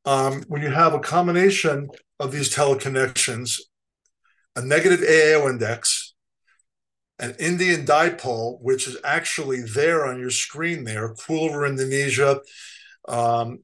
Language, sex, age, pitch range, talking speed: English, male, 50-69, 125-160 Hz, 125 wpm